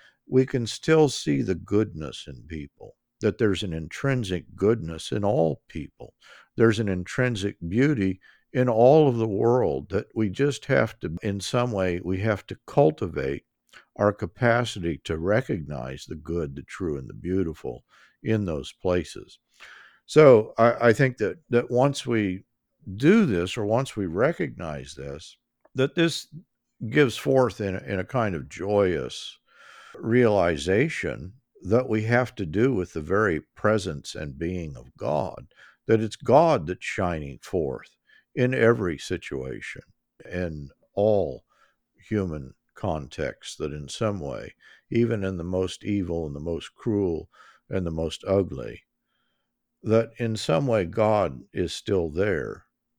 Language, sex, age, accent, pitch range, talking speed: English, male, 50-69, American, 80-120 Hz, 145 wpm